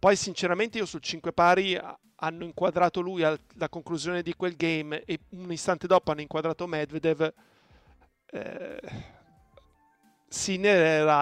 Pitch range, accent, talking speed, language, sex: 155-185 Hz, native, 130 wpm, Italian, male